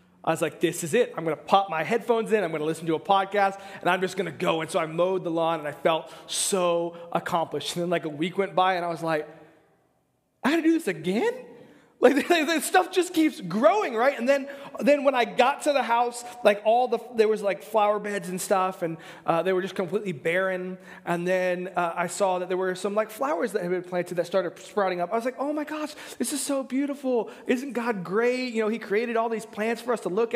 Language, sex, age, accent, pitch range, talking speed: English, male, 20-39, American, 185-265 Hz, 260 wpm